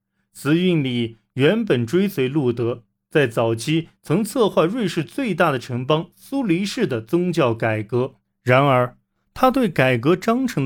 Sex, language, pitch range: male, Chinese, 115-165 Hz